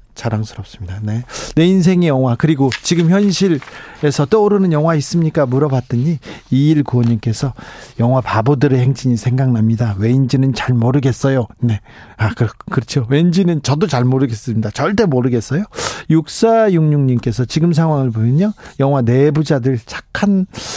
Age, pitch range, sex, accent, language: 40-59, 125-160 Hz, male, native, Korean